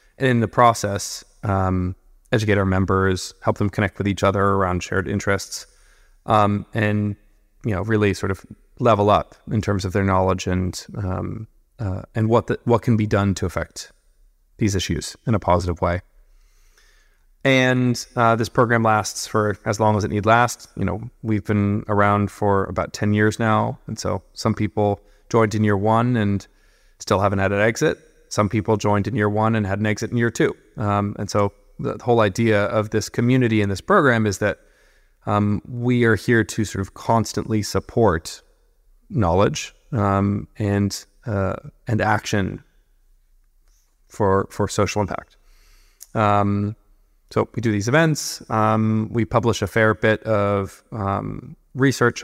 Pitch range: 100-115 Hz